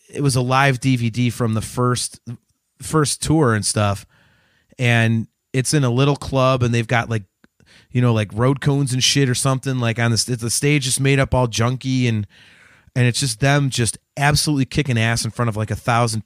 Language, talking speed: English, 205 wpm